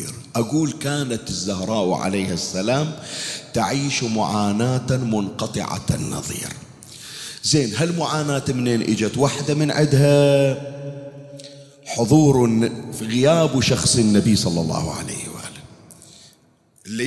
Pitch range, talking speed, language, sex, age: 110-145 Hz, 90 wpm, Arabic, male, 40-59